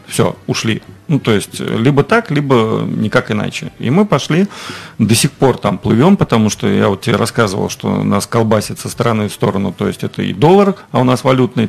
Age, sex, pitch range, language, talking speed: 40-59, male, 105-125 Hz, Russian, 205 wpm